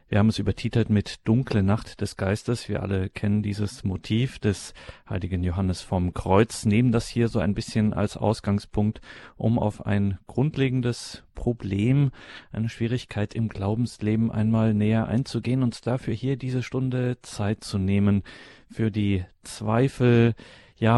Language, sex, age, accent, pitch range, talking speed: German, male, 40-59, German, 105-115 Hz, 145 wpm